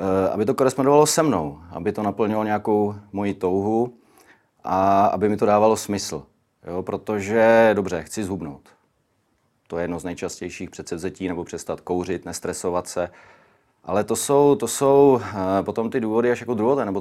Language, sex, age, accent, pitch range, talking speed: Czech, male, 30-49, native, 90-105 Hz, 160 wpm